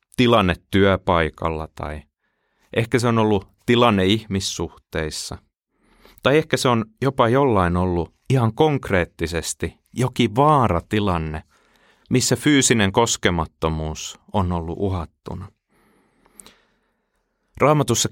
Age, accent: 30-49, native